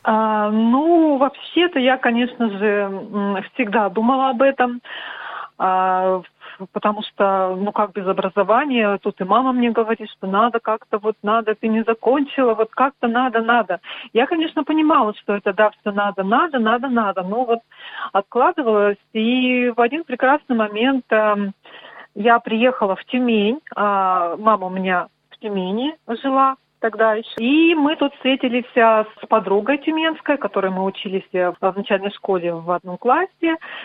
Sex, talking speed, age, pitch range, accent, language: female, 140 wpm, 40-59, 200-255 Hz, native, Russian